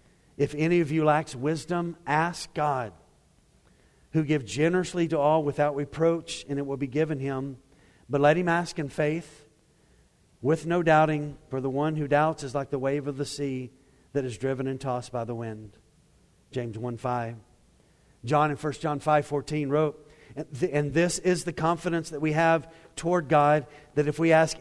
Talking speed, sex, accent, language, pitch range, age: 175 wpm, male, American, English, 130-155 Hz, 50-69